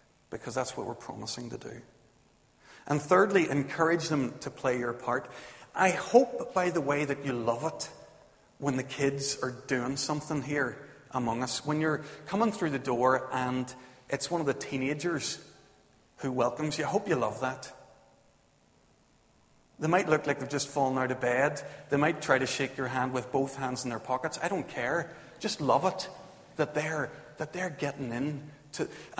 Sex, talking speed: male, 185 wpm